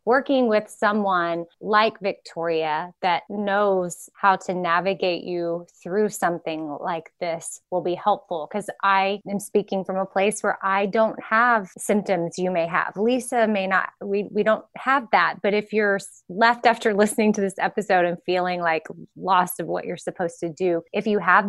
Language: English